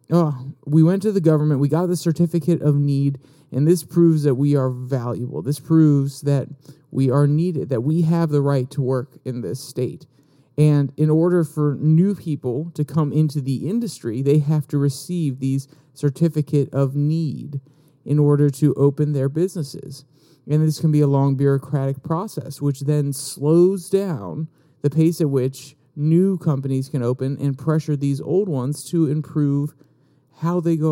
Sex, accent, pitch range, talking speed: male, American, 140-160 Hz, 175 wpm